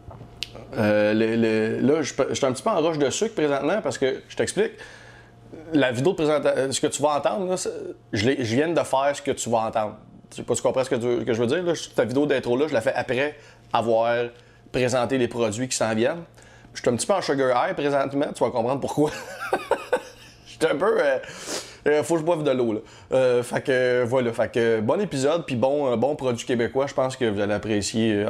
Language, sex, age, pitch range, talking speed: English, male, 30-49, 110-140 Hz, 240 wpm